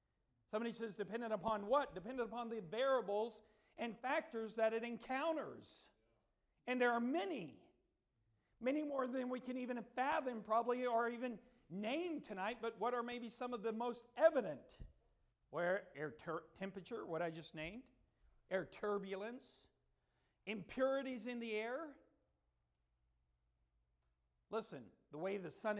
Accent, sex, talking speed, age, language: American, male, 135 wpm, 50-69, English